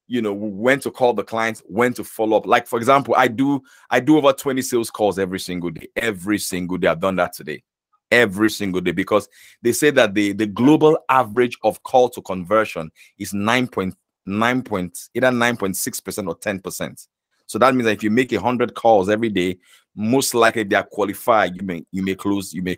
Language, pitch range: English, 95-120 Hz